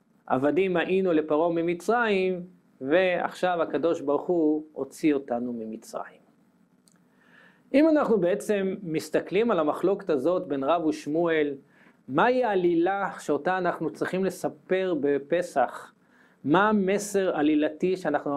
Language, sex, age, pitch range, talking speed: English, male, 40-59, 155-215 Hz, 100 wpm